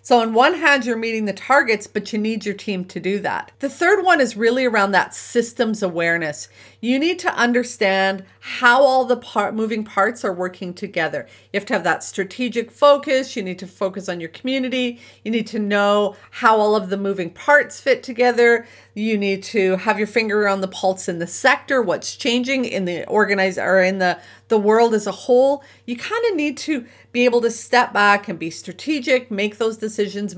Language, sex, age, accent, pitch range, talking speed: English, female, 40-59, American, 195-245 Hz, 200 wpm